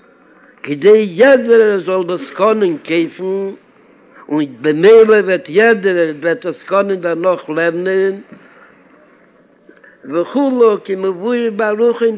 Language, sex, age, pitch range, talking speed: Hebrew, male, 60-79, 170-225 Hz, 75 wpm